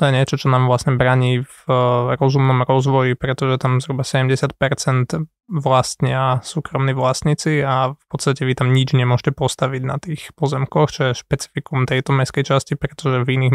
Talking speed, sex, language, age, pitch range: 160 wpm, male, Slovak, 20-39, 130-140 Hz